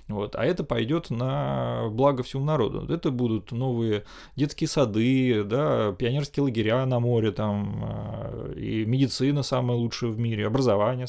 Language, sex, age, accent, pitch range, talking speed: Russian, male, 20-39, native, 110-140 Hz, 140 wpm